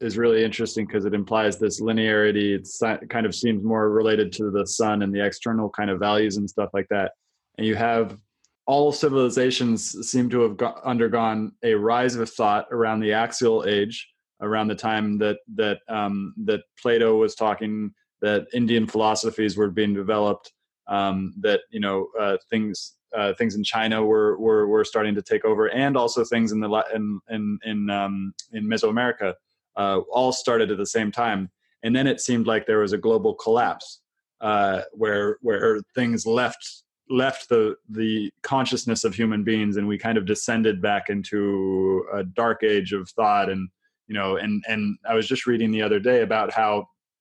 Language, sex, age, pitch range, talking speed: English, male, 20-39, 105-120 Hz, 185 wpm